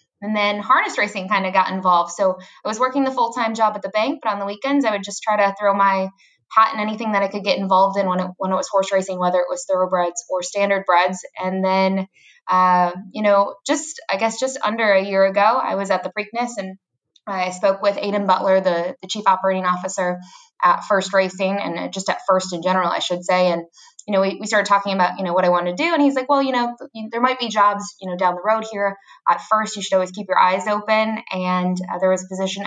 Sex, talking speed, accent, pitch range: female, 255 wpm, American, 185-215 Hz